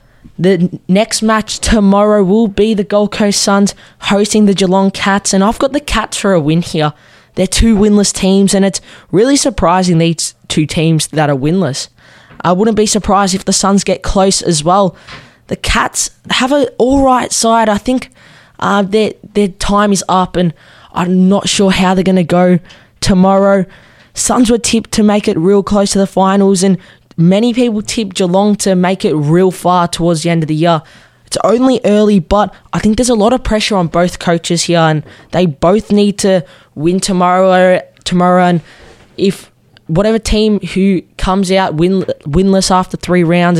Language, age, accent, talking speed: English, 10-29, Australian, 185 wpm